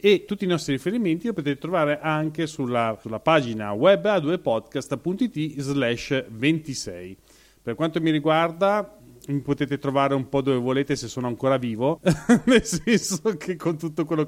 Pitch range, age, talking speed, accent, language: 125-155 Hz, 30-49, 155 wpm, native, Italian